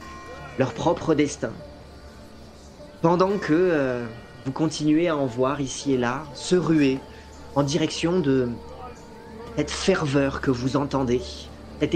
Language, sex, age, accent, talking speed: French, male, 30-49, French, 125 wpm